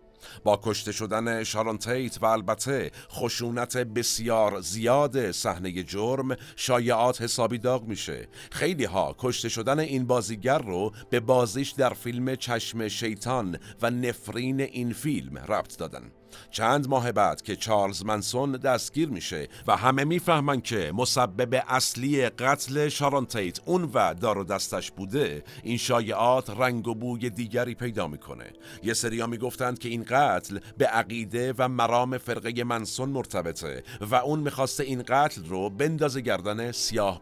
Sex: male